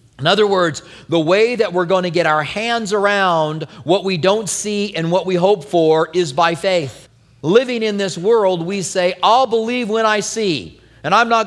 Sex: male